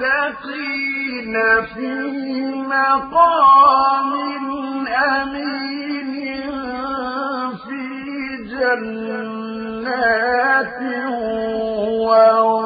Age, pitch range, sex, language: 50-69, 220-270 Hz, male, Arabic